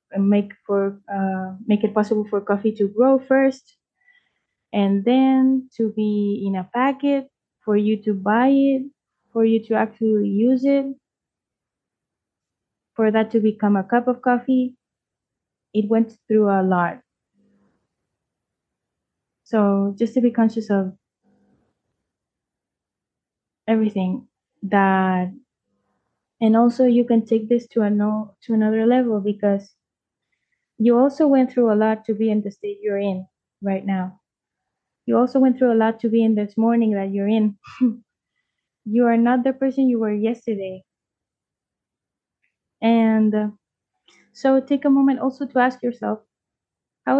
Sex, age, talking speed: female, 20-39, 140 wpm